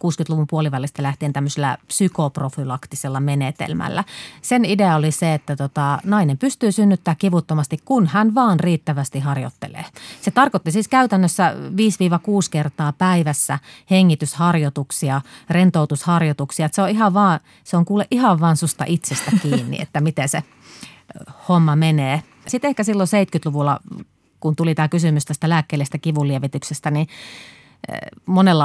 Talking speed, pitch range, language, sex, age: 125 wpm, 145-180 Hz, Finnish, female, 30-49